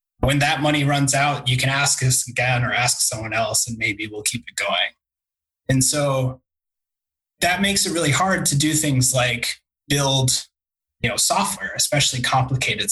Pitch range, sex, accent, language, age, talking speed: 120-140 Hz, male, American, English, 20-39, 170 wpm